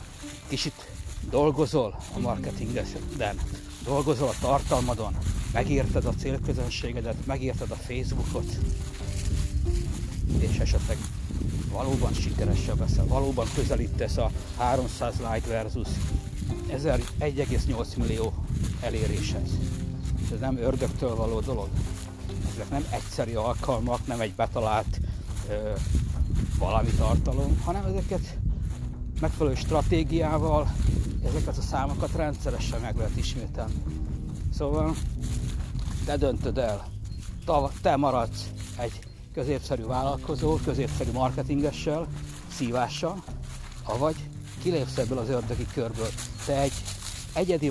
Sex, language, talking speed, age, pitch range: male, Hungarian, 95 wpm, 60-79, 90-125 Hz